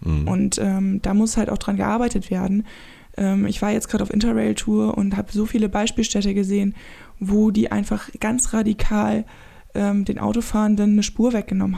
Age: 20-39